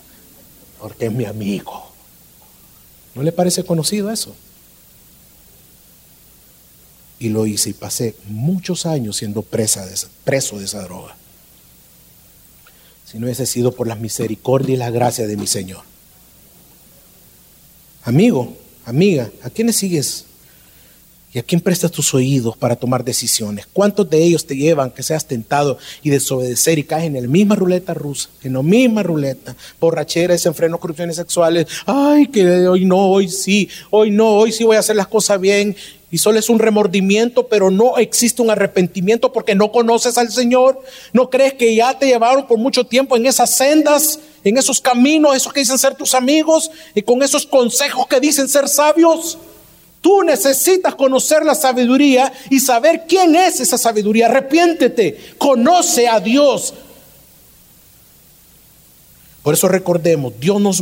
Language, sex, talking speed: Spanish, male, 155 wpm